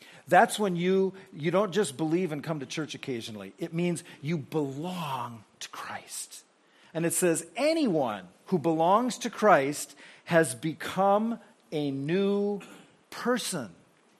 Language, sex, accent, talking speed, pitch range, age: English, male, American, 130 wpm, 155-210 Hz, 40-59